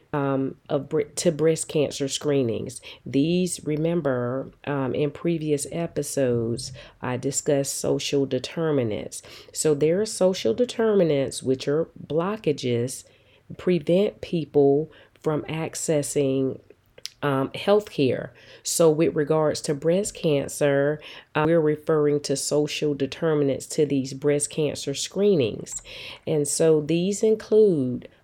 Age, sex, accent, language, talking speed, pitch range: 40-59, female, American, English, 110 wpm, 140-180 Hz